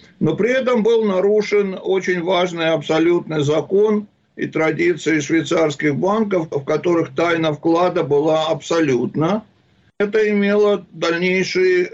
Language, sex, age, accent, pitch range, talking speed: Russian, male, 60-79, native, 155-195 Hz, 110 wpm